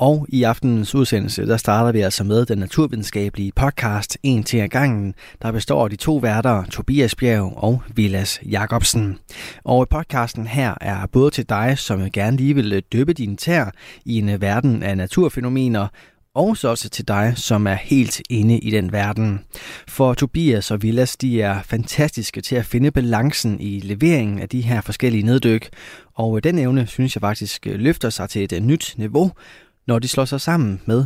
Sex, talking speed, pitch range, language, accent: male, 180 wpm, 100-125 Hz, Danish, native